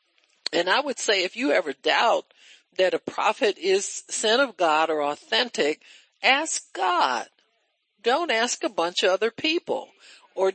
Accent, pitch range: American, 145-220 Hz